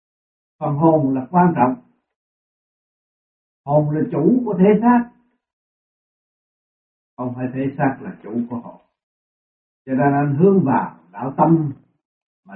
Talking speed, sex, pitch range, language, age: 130 wpm, male, 130-205 Hz, Vietnamese, 60-79